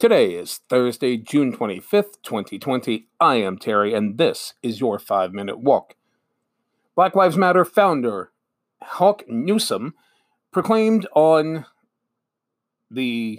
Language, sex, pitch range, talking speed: English, male, 130-185 Hz, 110 wpm